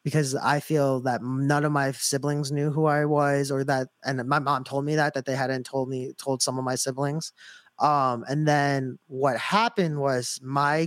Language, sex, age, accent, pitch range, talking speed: English, male, 20-39, American, 135-165 Hz, 205 wpm